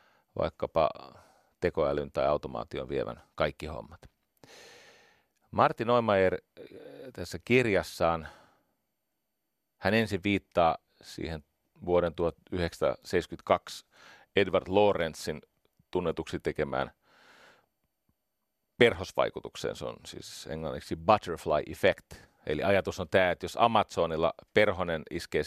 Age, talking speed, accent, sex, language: 40-59, 85 wpm, native, male, Finnish